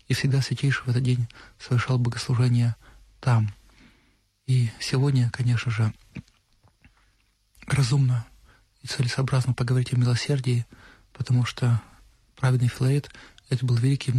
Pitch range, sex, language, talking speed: 115-130 Hz, male, Russian, 110 wpm